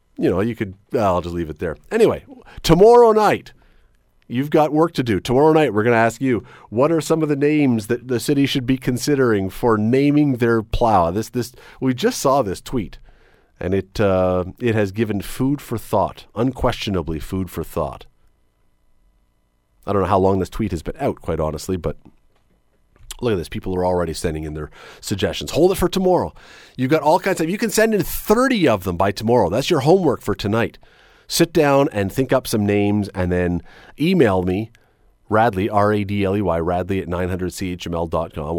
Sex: male